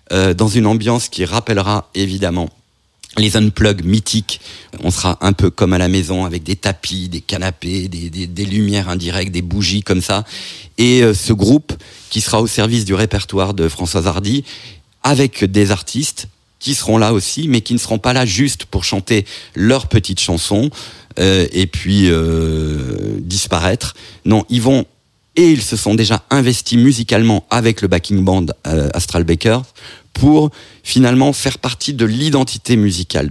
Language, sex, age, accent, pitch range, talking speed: French, male, 40-59, French, 95-120 Hz, 165 wpm